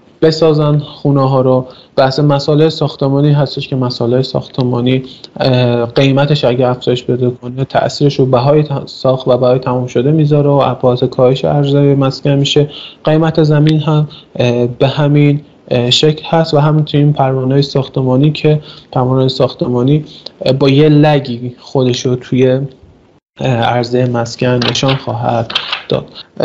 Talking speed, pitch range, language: 130 wpm, 130-150 Hz, Persian